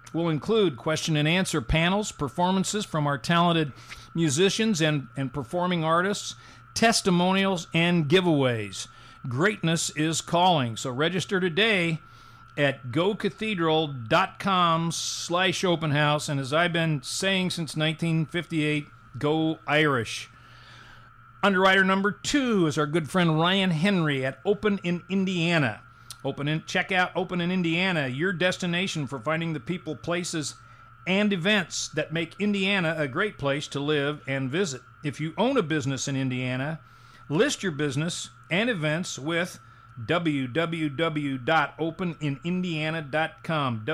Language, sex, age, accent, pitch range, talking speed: English, male, 40-59, American, 140-180 Hz, 120 wpm